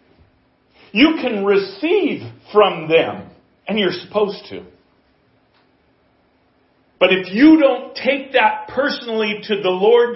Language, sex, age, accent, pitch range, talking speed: English, male, 40-59, American, 145-210 Hz, 110 wpm